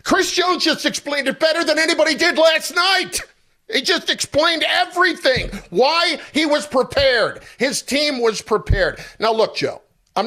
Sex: male